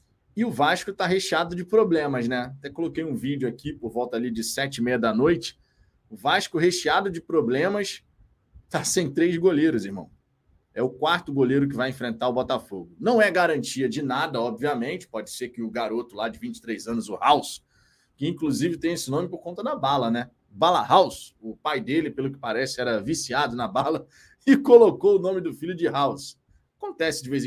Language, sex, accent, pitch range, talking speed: Portuguese, male, Brazilian, 140-185 Hz, 200 wpm